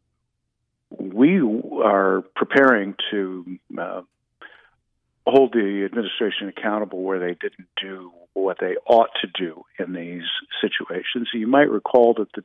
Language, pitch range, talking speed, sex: English, 100-135 Hz, 125 wpm, male